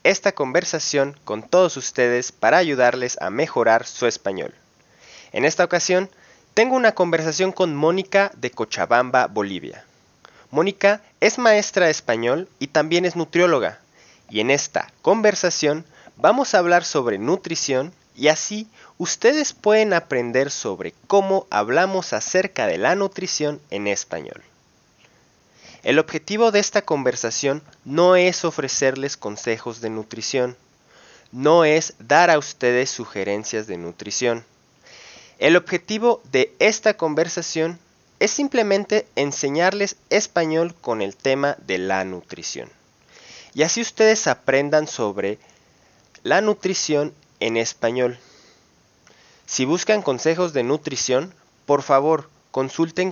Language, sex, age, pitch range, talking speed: English, male, 30-49, 130-190 Hz, 120 wpm